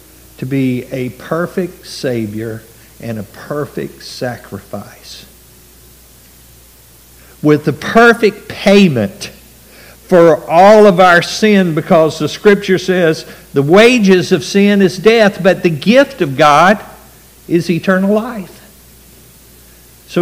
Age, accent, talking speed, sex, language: 60-79, American, 110 wpm, male, English